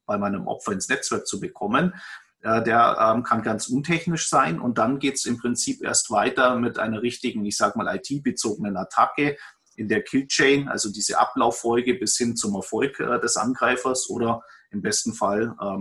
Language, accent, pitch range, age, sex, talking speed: German, German, 110-140 Hz, 30-49, male, 165 wpm